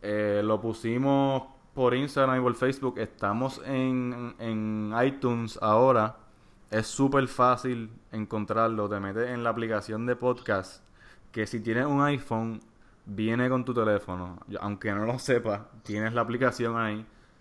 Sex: male